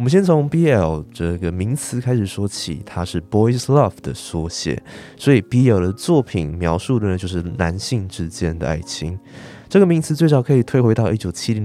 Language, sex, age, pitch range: Chinese, male, 20-39, 85-125 Hz